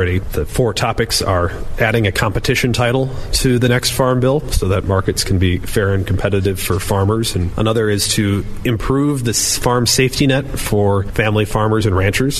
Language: English